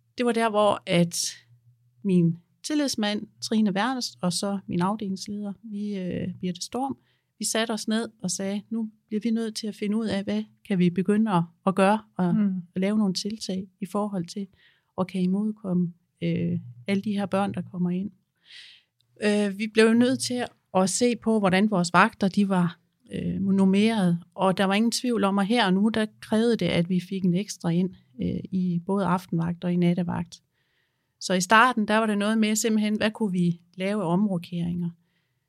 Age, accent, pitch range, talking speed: 30-49, native, 180-220 Hz, 190 wpm